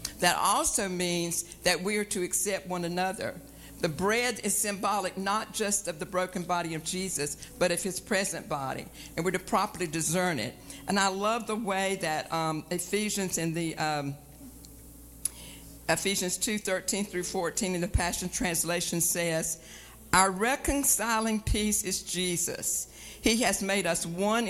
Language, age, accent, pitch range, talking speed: English, 60-79, American, 170-210 Hz, 155 wpm